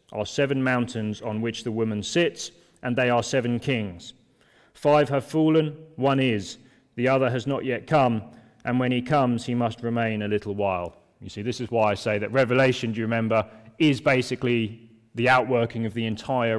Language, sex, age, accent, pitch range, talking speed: English, male, 30-49, British, 110-130 Hz, 190 wpm